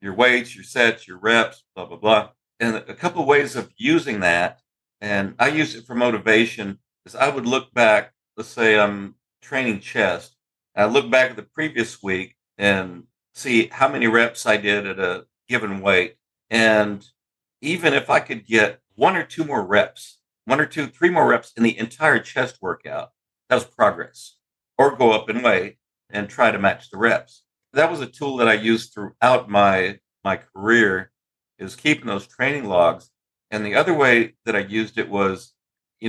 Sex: male